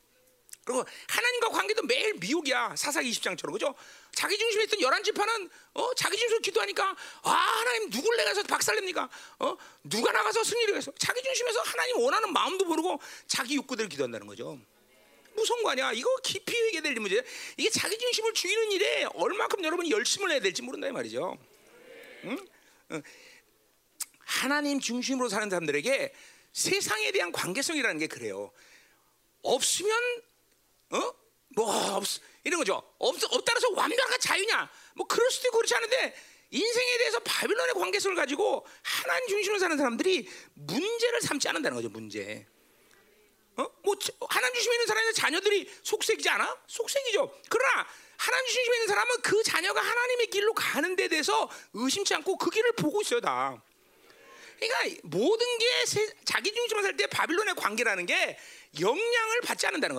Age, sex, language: 40-59, male, Korean